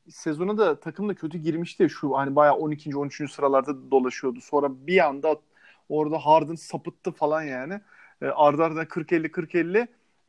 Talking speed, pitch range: 145 wpm, 160-215 Hz